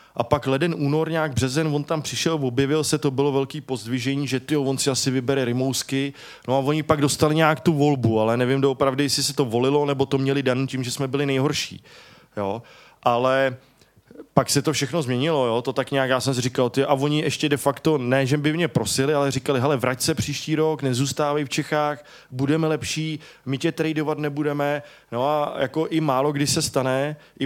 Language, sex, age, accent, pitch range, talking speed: English, male, 20-39, Czech, 130-145 Hz, 215 wpm